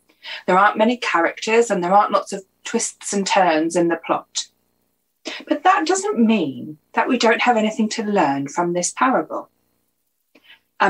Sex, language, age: female, English, 40-59